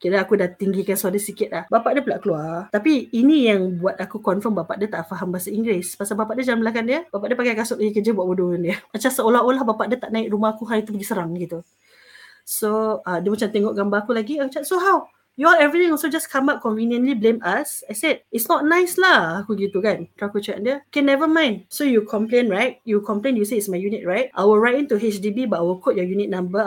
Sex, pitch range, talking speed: female, 200-255 Hz, 245 wpm